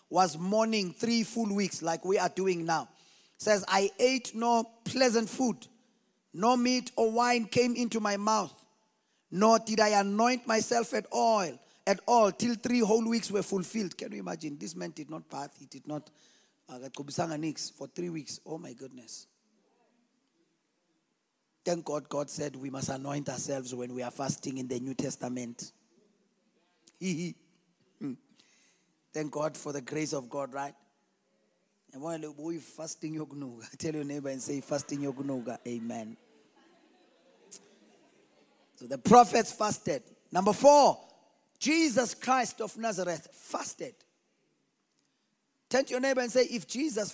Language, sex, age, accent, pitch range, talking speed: English, male, 30-49, South African, 145-230 Hz, 150 wpm